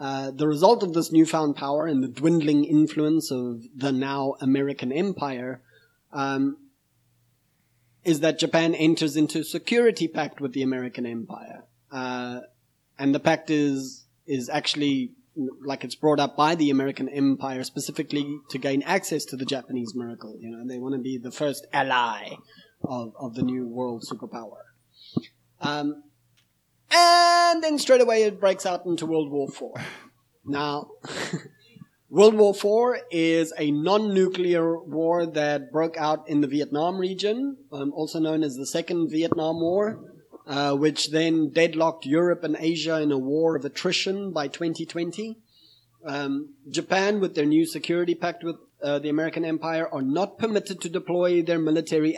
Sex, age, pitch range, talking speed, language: male, 30-49, 135-165 Hz, 155 wpm, English